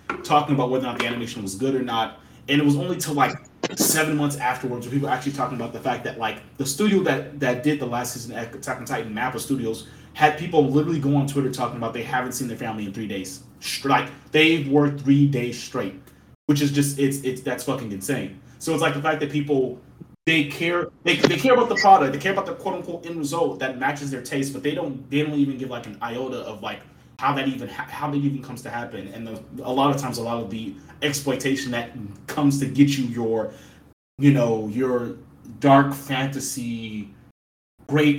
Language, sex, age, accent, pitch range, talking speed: English, male, 20-39, American, 120-145 Hz, 225 wpm